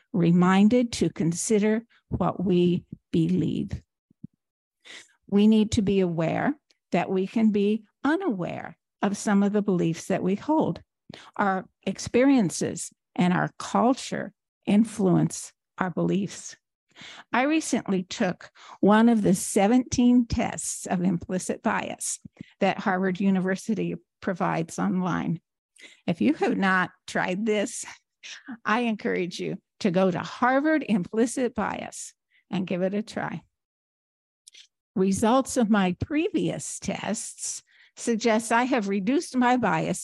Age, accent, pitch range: 50-69, American, 185-235 Hz